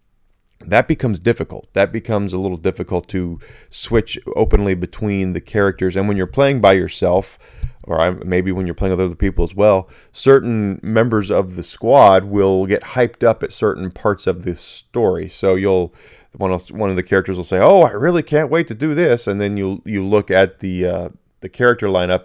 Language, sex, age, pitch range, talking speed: English, male, 30-49, 90-105 Hz, 200 wpm